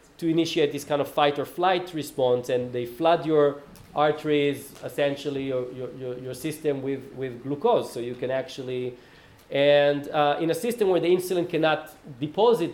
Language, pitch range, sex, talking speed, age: English, 135-175 Hz, male, 165 wpm, 40-59